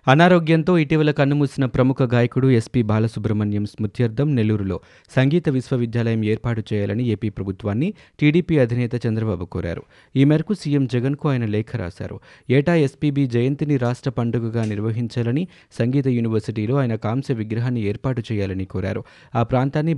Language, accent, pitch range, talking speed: Telugu, native, 110-135 Hz, 125 wpm